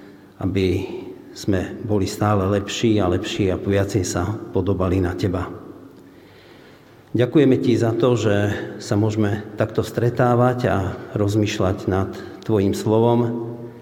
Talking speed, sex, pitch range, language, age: 115 wpm, male, 100-115 Hz, Slovak, 50-69